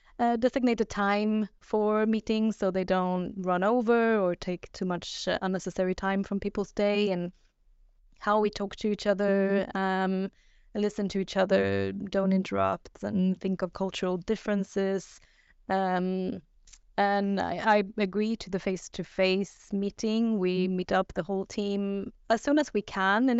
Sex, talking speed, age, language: female, 150 wpm, 20-39, English